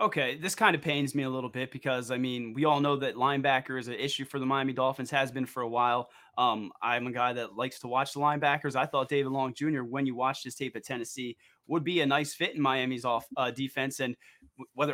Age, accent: 20-39, American